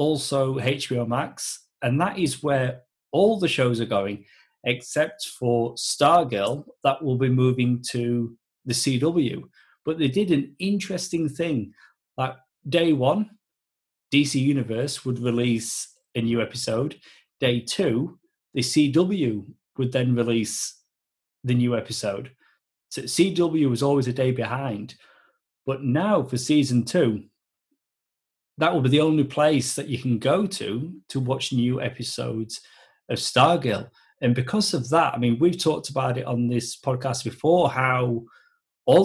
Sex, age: male, 30-49